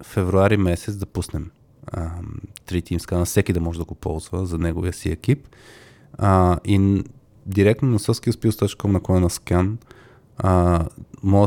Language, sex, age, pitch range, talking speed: Bulgarian, male, 20-39, 85-110 Hz, 135 wpm